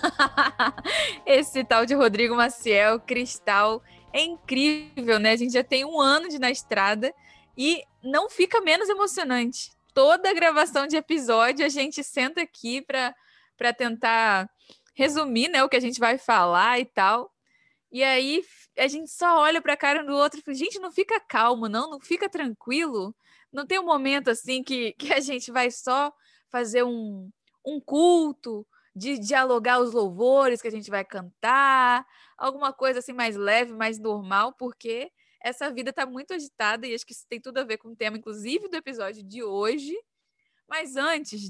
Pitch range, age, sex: 220-285 Hz, 10-29, female